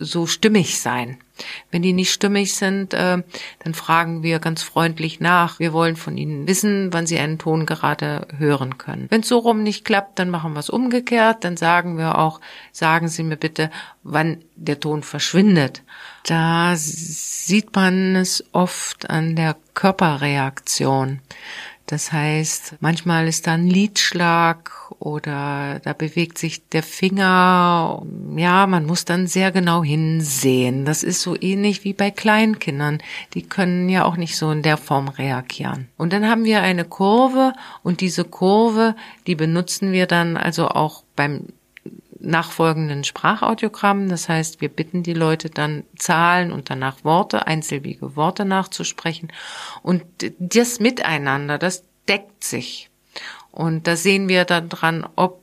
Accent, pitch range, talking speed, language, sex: German, 155-190 Hz, 150 wpm, German, female